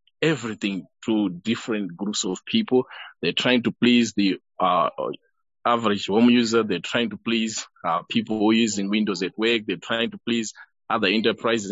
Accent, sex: South African, male